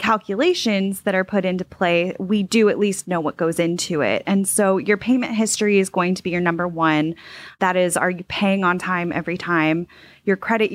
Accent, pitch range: American, 180-205 Hz